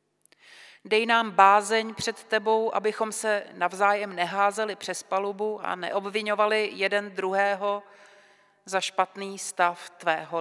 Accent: native